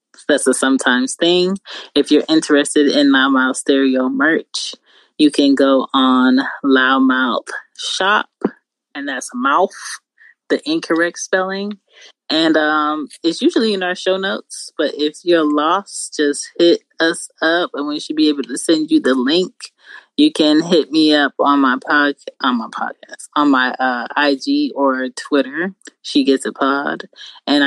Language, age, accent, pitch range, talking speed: English, 20-39, American, 135-190 Hz, 160 wpm